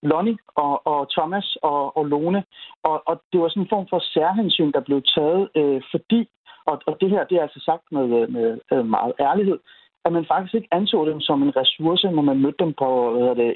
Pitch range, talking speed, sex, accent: 145-185 Hz, 215 wpm, male, native